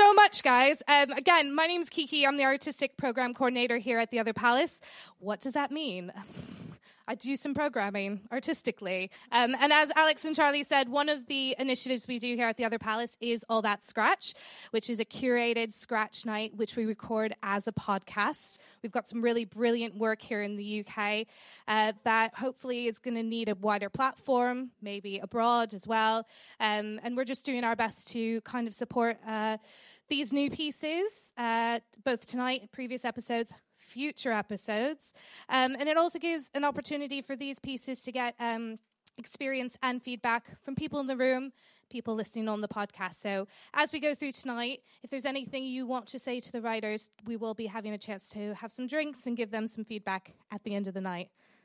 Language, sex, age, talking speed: English, female, 20-39, 200 wpm